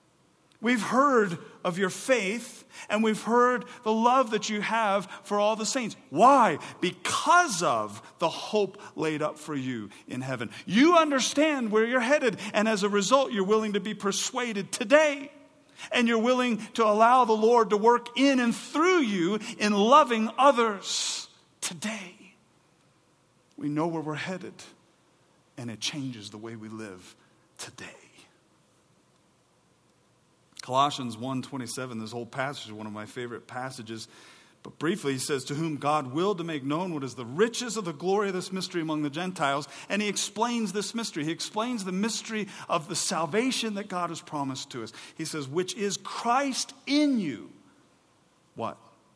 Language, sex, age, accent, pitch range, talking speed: English, male, 50-69, American, 155-235 Hz, 165 wpm